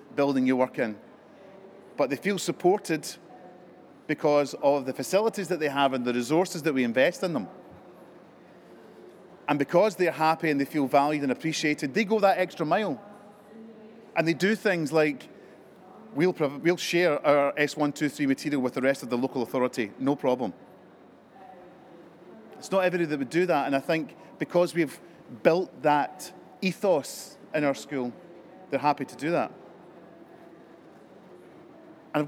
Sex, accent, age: male, British, 30-49